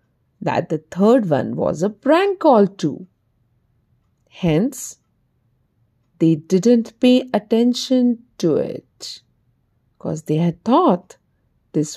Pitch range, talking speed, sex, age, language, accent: 160-255 Hz, 105 wpm, female, 50-69, Hindi, native